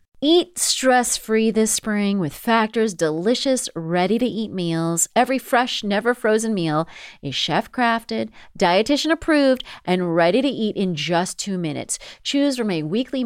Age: 30-49